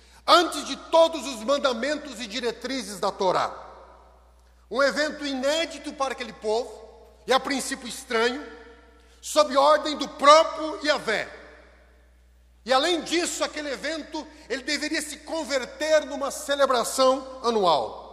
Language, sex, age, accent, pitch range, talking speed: Portuguese, male, 40-59, Brazilian, 230-300 Hz, 120 wpm